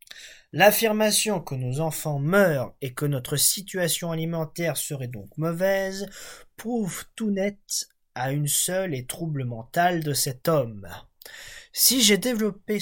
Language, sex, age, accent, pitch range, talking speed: French, male, 20-39, French, 145-210 Hz, 130 wpm